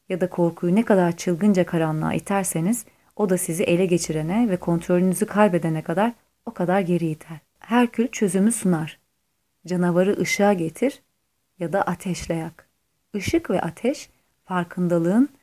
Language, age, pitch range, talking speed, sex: Turkish, 30-49, 165-205 Hz, 140 wpm, female